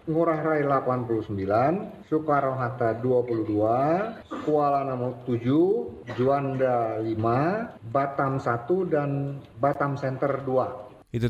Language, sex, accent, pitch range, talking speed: Indonesian, male, native, 105-140 Hz, 85 wpm